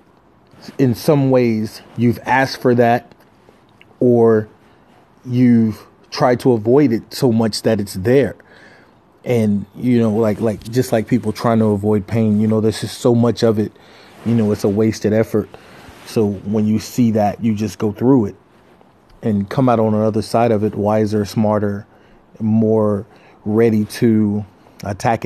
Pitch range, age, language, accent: 105-125 Hz, 30-49, English, American